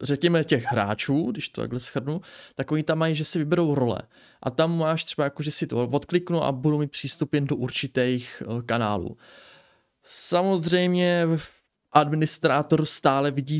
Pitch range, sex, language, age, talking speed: 125-155 Hz, male, Czech, 20-39, 155 wpm